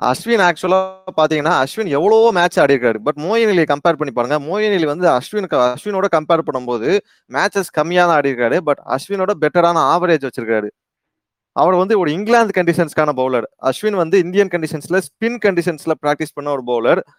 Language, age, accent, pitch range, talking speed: Tamil, 20-39, native, 140-175 Hz, 155 wpm